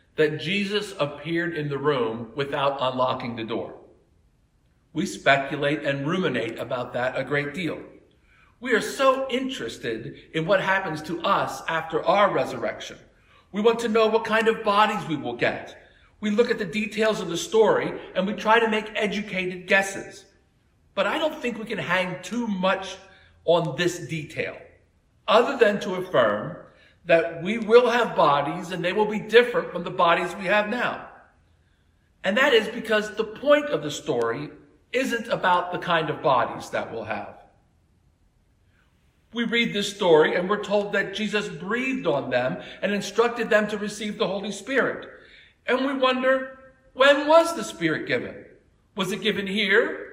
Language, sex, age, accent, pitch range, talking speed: English, male, 50-69, American, 155-235 Hz, 165 wpm